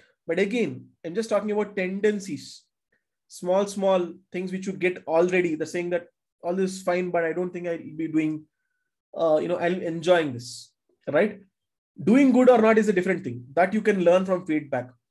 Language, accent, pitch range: English, Indian, 155-205 Hz